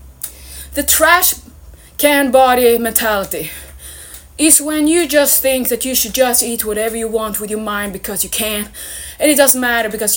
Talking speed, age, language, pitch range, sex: 170 wpm, 20-39, English, 225-290 Hz, female